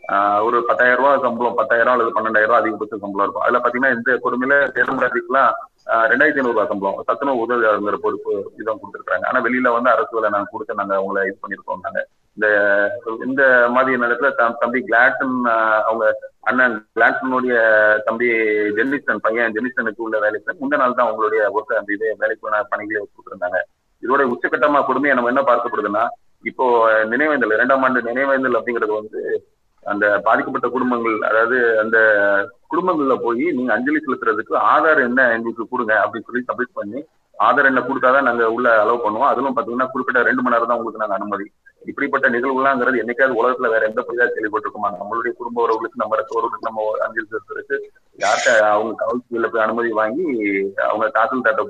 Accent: native